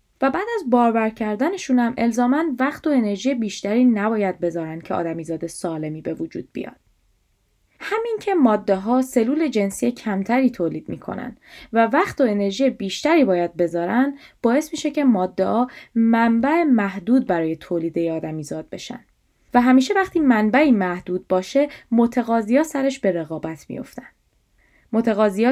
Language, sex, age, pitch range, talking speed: Persian, female, 10-29, 185-270 Hz, 135 wpm